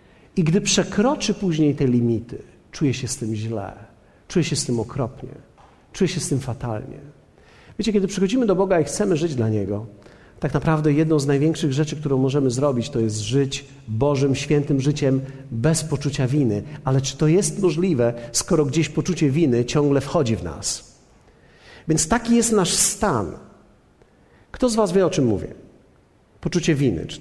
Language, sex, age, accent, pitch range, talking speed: Polish, male, 50-69, native, 135-175 Hz, 170 wpm